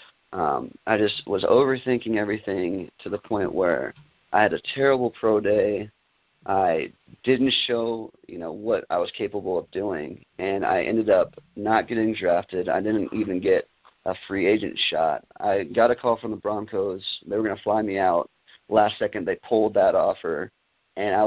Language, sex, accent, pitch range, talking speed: English, male, American, 105-115 Hz, 180 wpm